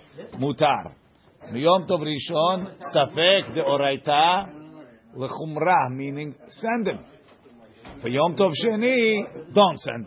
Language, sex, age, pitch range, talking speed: English, male, 50-69, 130-155 Hz, 105 wpm